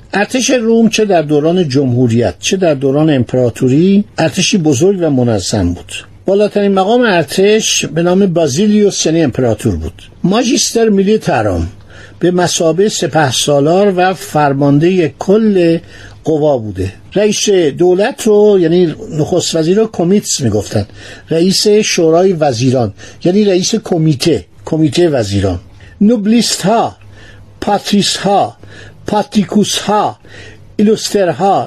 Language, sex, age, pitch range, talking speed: Persian, male, 60-79, 140-210 Hz, 105 wpm